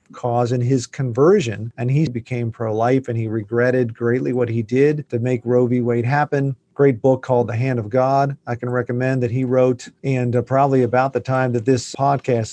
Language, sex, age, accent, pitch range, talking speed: English, male, 40-59, American, 120-150 Hz, 205 wpm